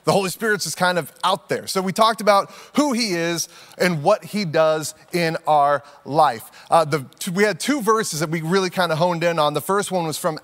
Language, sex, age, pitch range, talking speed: English, male, 30-49, 155-195 Hz, 235 wpm